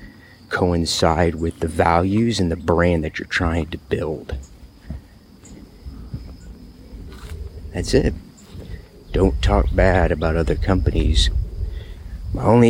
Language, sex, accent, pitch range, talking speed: English, male, American, 85-95 Hz, 105 wpm